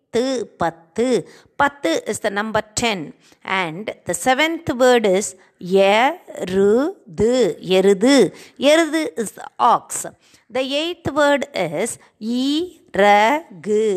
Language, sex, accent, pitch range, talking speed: Tamil, female, native, 210-290 Hz, 115 wpm